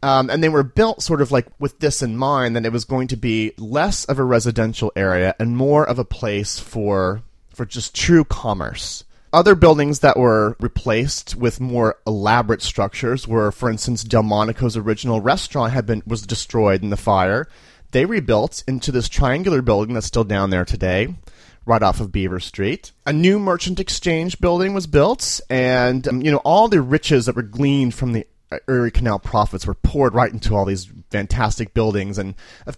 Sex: male